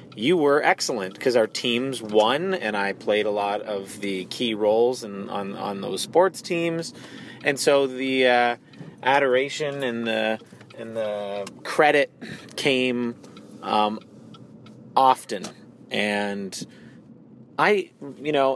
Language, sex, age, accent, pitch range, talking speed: English, male, 30-49, American, 115-135 Hz, 125 wpm